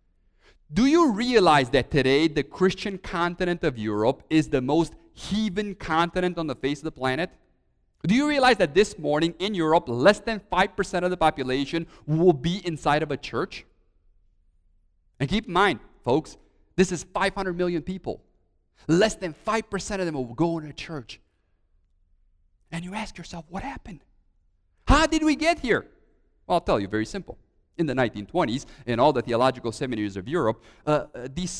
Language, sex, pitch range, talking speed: English, male, 130-200 Hz, 170 wpm